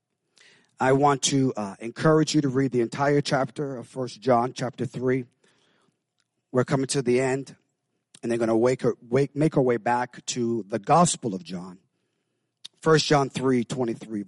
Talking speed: 170 wpm